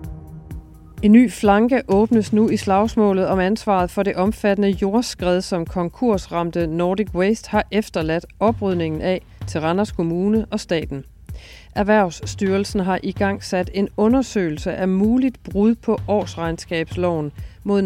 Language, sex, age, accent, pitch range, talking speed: Danish, female, 40-59, native, 165-210 Hz, 130 wpm